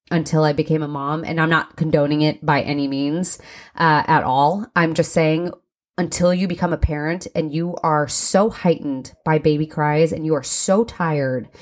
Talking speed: 190 wpm